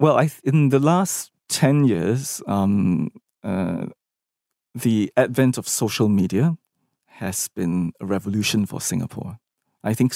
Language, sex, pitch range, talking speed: English, male, 100-125 Hz, 130 wpm